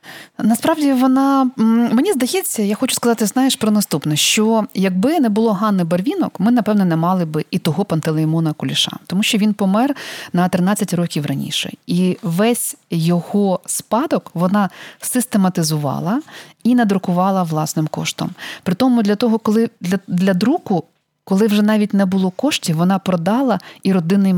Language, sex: Ukrainian, female